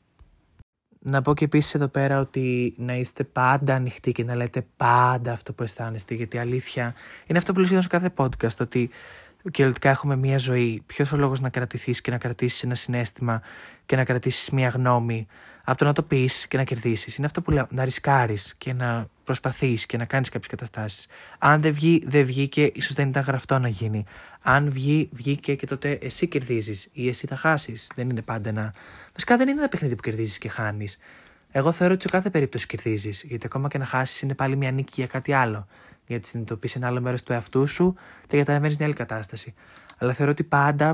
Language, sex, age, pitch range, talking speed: Greek, male, 20-39, 120-140 Hz, 210 wpm